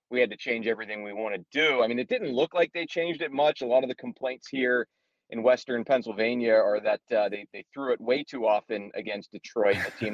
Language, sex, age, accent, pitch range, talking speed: English, male, 30-49, American, 115-135 Hz, 250 wpm